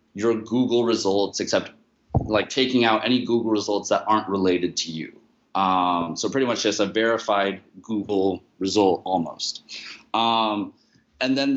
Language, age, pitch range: English, 20-39, 100-120 Hz